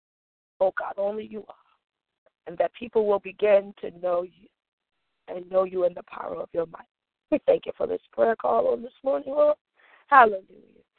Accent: American